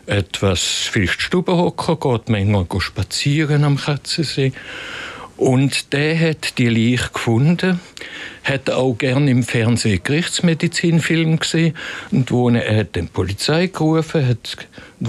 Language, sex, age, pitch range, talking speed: German, male, 60-79, 110-155 Hz, 120 wpm